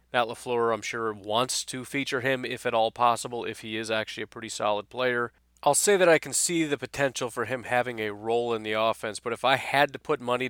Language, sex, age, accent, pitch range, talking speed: English, male, 30-49, American, 110-140 Hz, 245 wpm